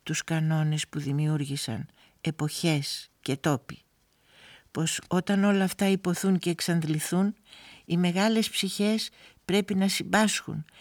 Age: 60-79